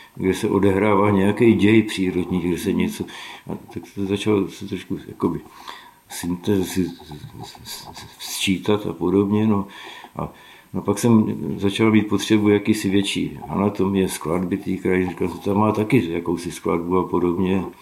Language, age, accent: Czech, 60-79, native